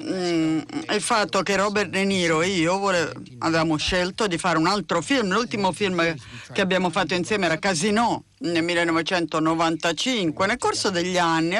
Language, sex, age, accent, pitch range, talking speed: Italian, female, 50-69, native, 170-235 Hz, 150 wpm